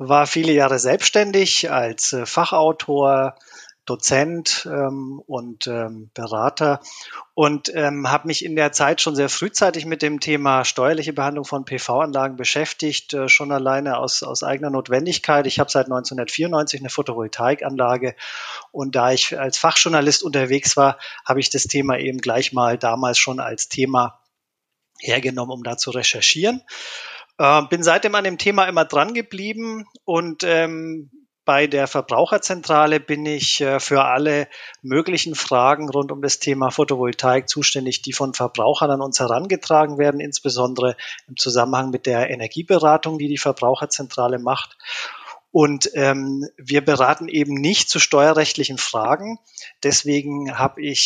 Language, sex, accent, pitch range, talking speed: German, male, German, 130-155 Hz, 140 wpm